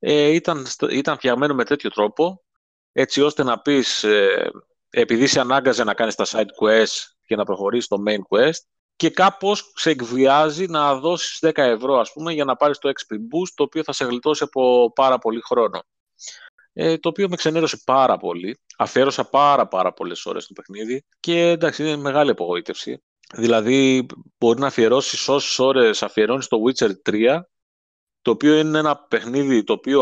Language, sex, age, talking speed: Greek, male, 30-49, 175 wpm